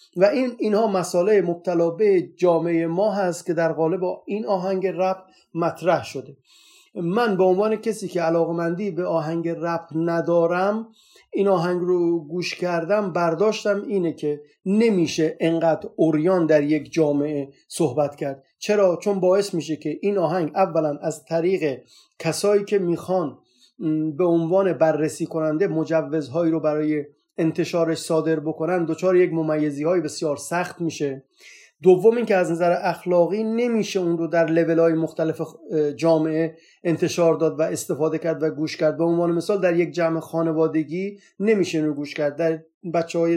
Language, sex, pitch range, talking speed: Persian, male, 160-190 Hz, 145 wpm